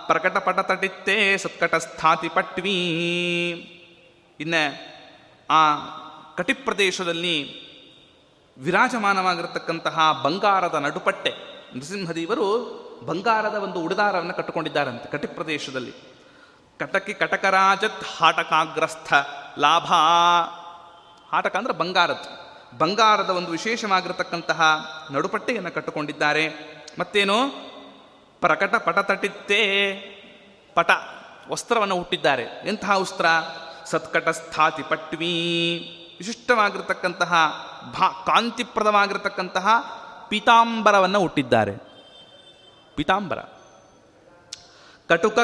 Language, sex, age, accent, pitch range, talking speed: Kannada, male, 30-49, native, 165-210 Hz, 70 wpm